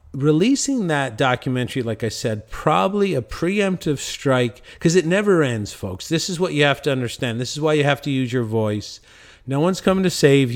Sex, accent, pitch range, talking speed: male, American, 115-145 Hz, 205 wpm